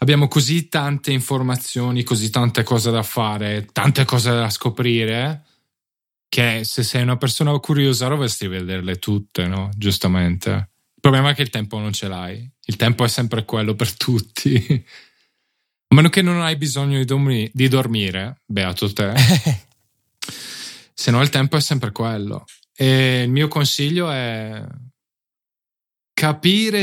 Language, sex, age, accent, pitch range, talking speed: Italian, male, 10-29, native, 110-150 Hz, 140 wpm